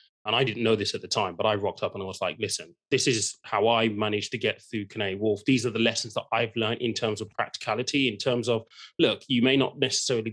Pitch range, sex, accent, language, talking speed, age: 105-125 Hz, male, British, English, 265 wpm, 20-39